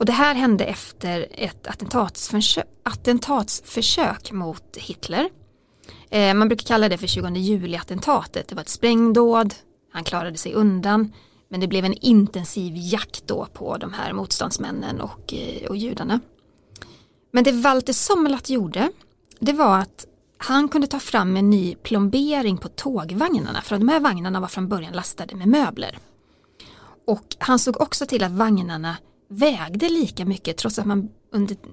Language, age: Swedish, 30-49